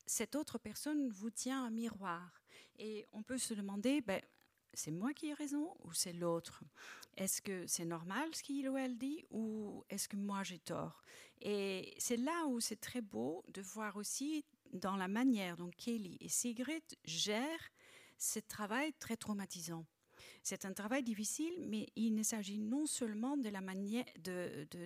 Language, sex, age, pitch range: French, female, 40-59, 180-250 Hz